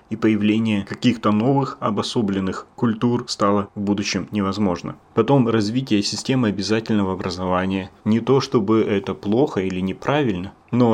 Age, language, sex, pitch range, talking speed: 30-49, Russian, male, 100-115 Hz, 125 wpm